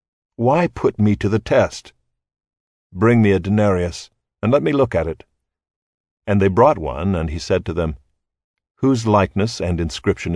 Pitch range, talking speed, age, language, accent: 85-110 Hz, 170 wpm, 60-79, English, American